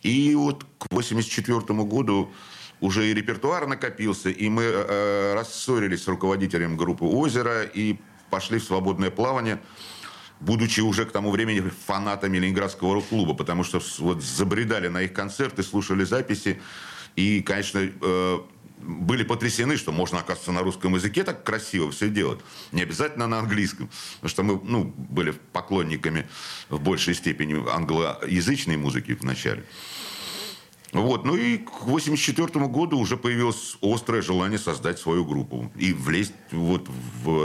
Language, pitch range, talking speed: Russian, 85-110 Hz, 140 wpm